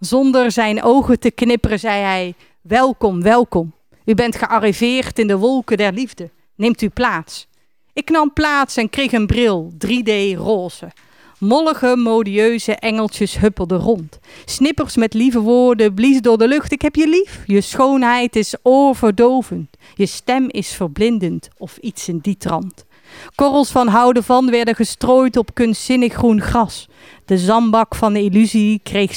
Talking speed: 155 wpm